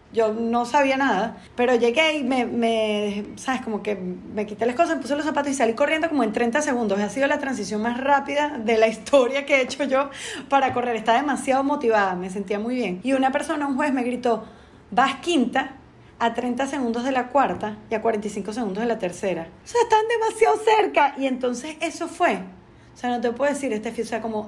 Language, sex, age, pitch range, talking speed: Spanish, female, 20-39, 230-280 Hz, 225 wpm